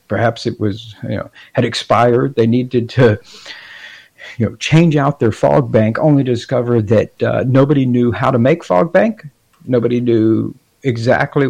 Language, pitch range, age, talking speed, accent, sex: English, 115-135 Hz, 50-69, 165 wpm, American, male